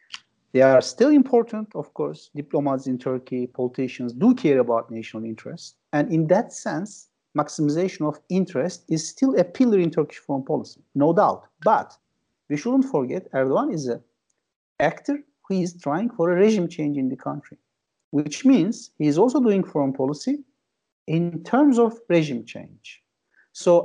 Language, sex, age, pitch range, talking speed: Turkish, male, 50-69, 150-230 Hz, 160 wpm